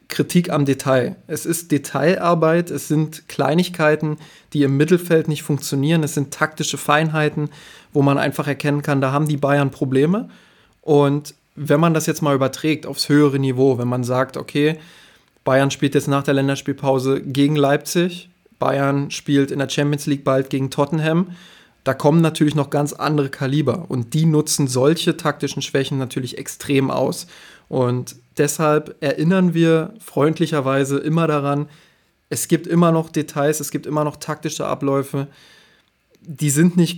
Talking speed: 155 wpm